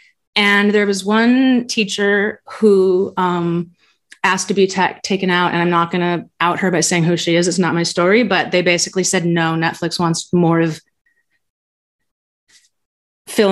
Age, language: 30-49, English